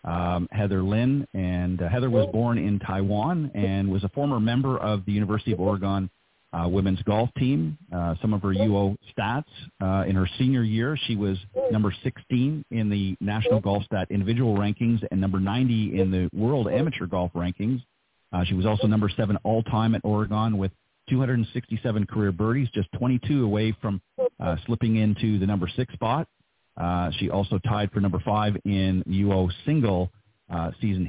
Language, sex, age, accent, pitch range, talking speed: English, male, 40-59, American, 95-115 Hz, 175 wpm